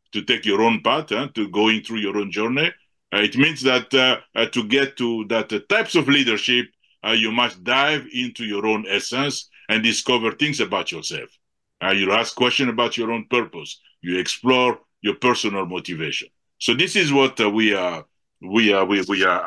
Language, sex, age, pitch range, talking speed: English, male, 60-79, 110-135 Hz, 195 wpm